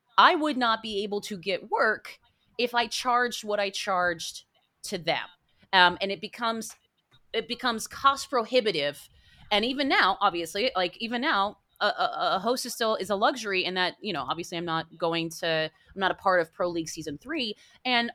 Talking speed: 190 wpm